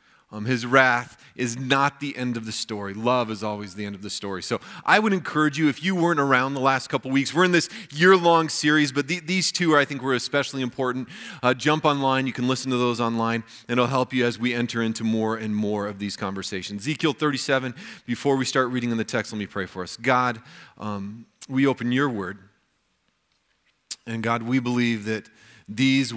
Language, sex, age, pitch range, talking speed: English, male, 30-49, 115-145 Hz, 220 wpm